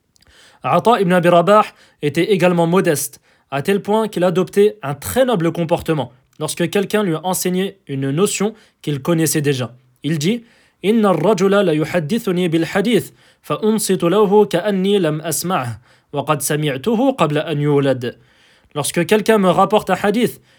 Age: 20-39